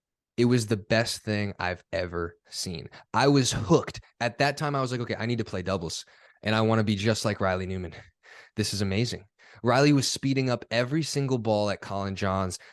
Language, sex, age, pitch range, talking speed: English, male, 20-39, 95-125 Hz, 210 wpm